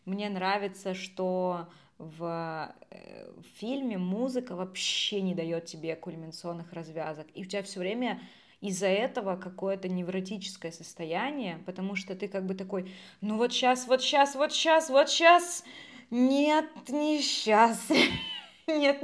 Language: Russian